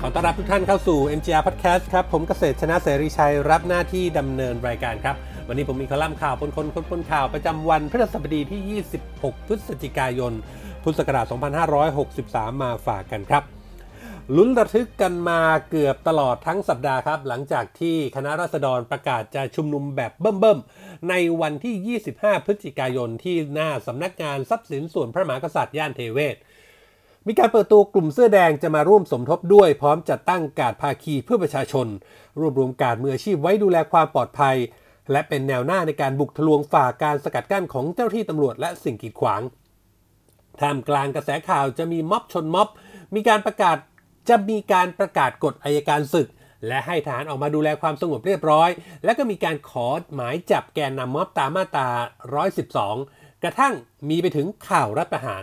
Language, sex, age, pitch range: Thai, male, 30-49, 135-180 Hz